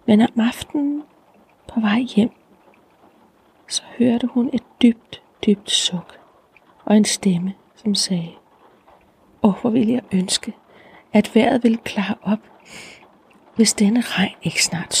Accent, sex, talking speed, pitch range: native, female, 135 wpm, 185-235 Hz